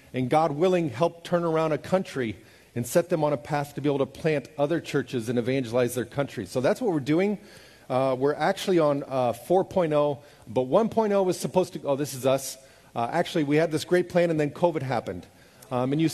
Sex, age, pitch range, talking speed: male, 40-59, 120-160 Hz, 220 wpm